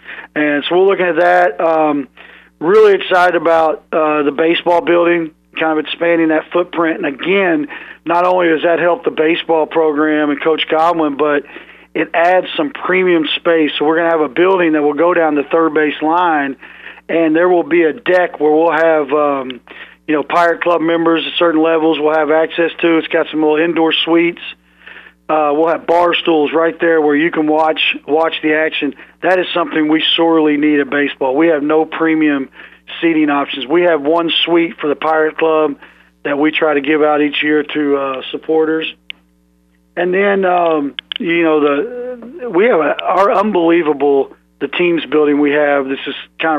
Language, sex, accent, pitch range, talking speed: English, male, American, 150-170 Hz, 190 wpm